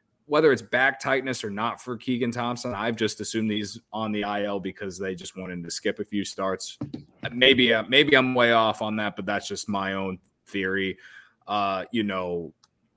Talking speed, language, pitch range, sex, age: 190 wpm, English, 100-130 Hz, male, 20-39